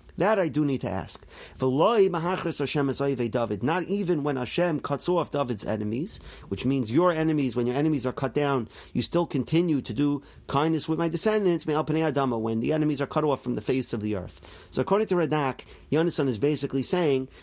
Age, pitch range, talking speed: 40-59, 130-170 Hz, 185 wpm